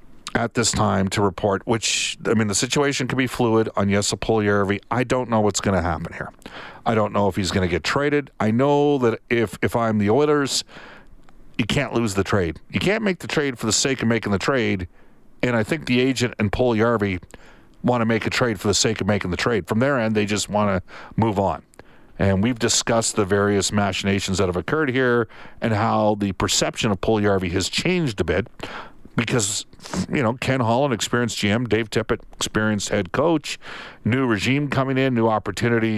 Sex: male